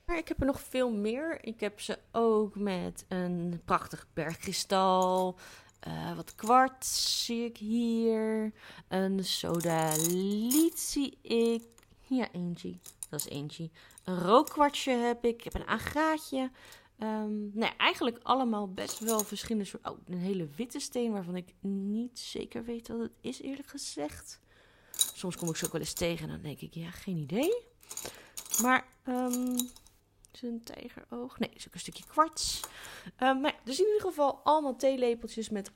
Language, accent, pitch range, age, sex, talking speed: Dutch, Dutch, 170-235 Hz, 30-49, female, 160 wpm